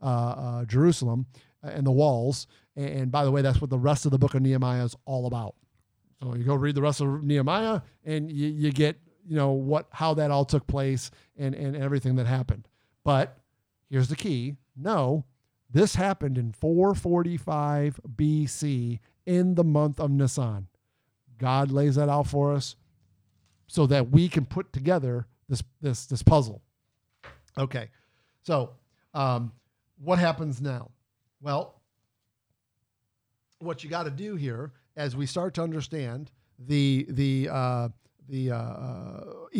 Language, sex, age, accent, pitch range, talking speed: English, male, 50-69, American, 120-150 Hz, 155 wpm